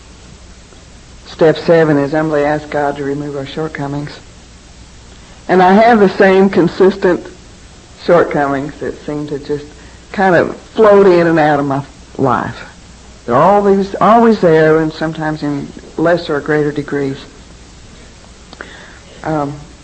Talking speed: 125 wpm